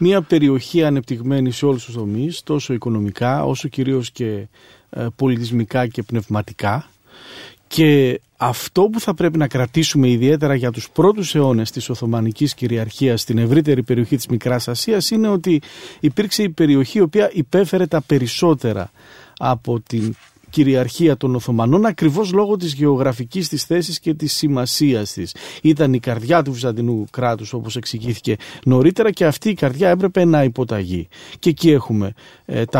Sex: male